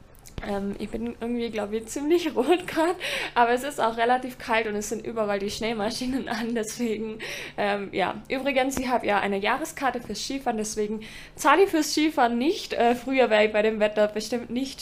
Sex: female